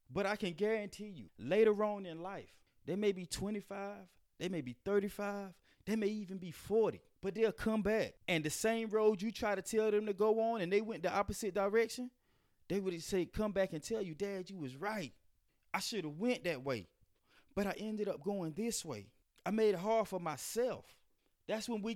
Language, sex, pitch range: English, male, 145-205 Hz